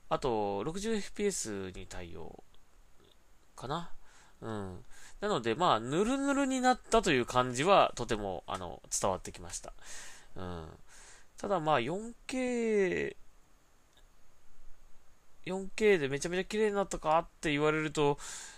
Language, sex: Japanese, male